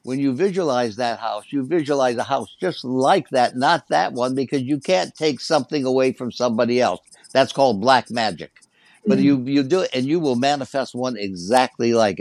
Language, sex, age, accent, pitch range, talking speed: English, male, 60-79, American, 125-155 Hz, 195 wpm